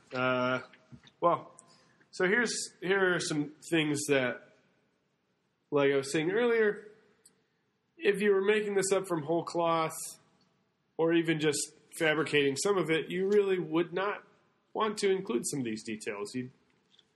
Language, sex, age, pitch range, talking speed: English, male, 20-39, 130-185 Hz, 145 wpm